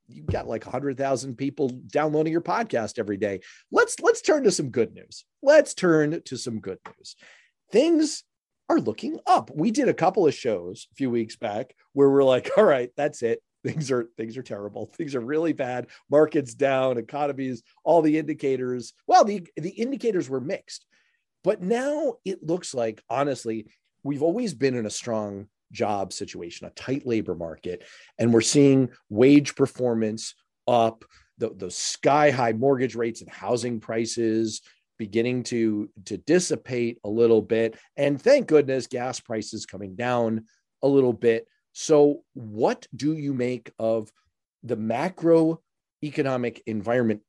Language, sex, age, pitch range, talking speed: English, male, 40-59, 115-150 Hz, 160 wpm